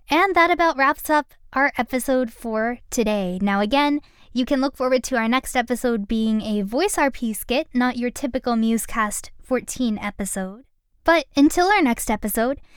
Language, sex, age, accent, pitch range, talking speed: English, female, 10-29, American, 225-285 Hz, 165 wpm